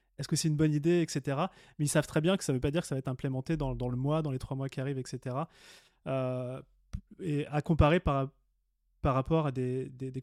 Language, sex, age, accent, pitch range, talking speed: French, male, 20-39, French, 130-160 Hz, 265 wpm